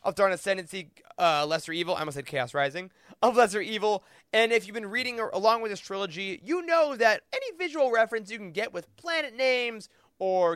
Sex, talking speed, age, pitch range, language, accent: male, 205 wpm, 20-39, 170-225 Hz, English, American